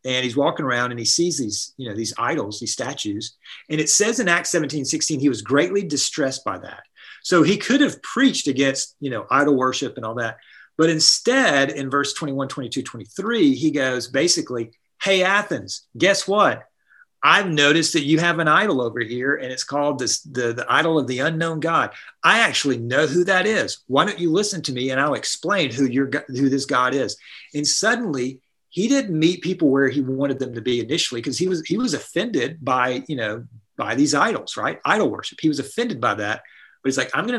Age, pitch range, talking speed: 40-59, 125-160 Hz, 210 wpm